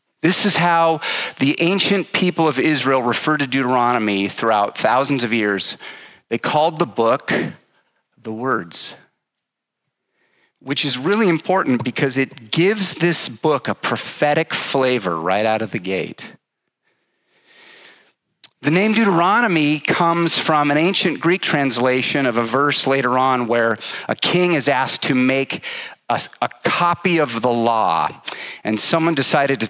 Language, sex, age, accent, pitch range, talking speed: English, male, 40-59, American, 125-170 Hz, 140 wpm